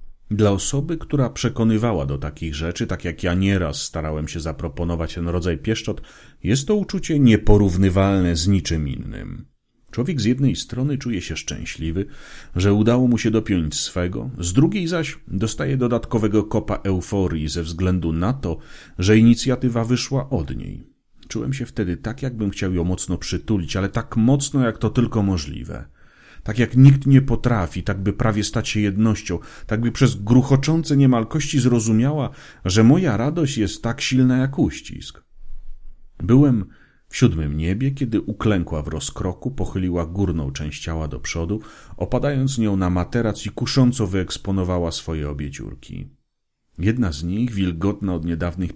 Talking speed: 155 wpm